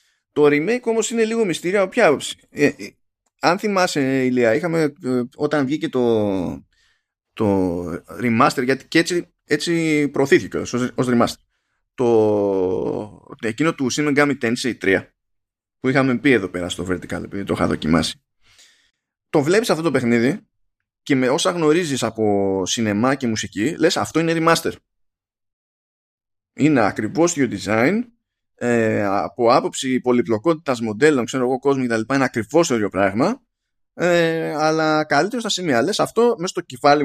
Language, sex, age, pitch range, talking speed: Greek, male, 20-39, 105-170 Hz, 145 wpm